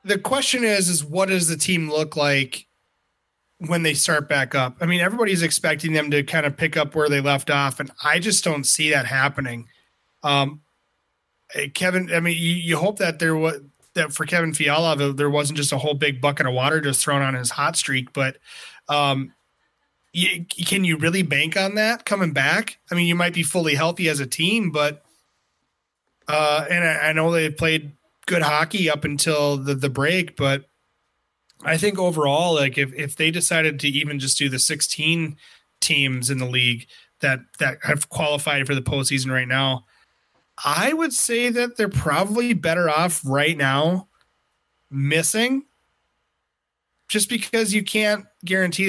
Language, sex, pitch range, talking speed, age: English, male, 140-175 Hz, 180 wpm, 30-49